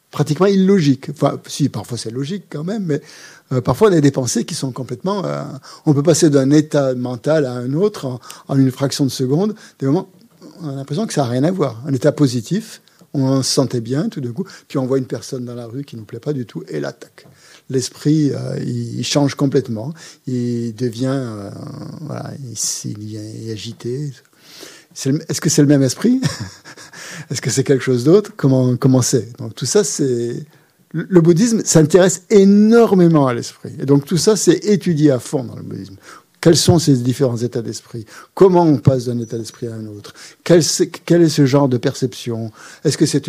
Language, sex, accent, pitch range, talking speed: French, male, French, 125-165 Hz, 210 wpm